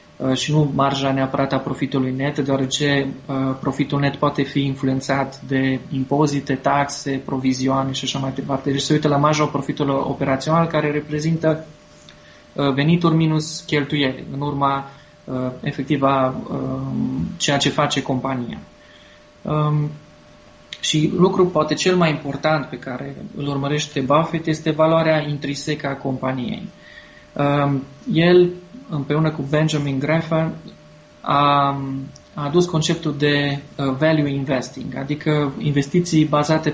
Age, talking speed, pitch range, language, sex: 20-39, 115 wpm, 135-155 Hz, Romanian, male